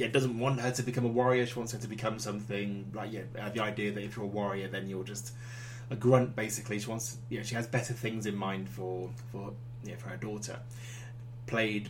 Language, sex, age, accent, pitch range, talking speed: English, male, 20-39, British, 105-120 Hz, 235 wpm